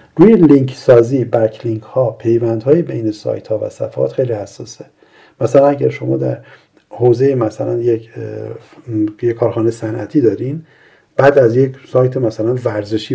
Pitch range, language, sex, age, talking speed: 110-140 Hz, Persian, male, 50-69, 145 wpm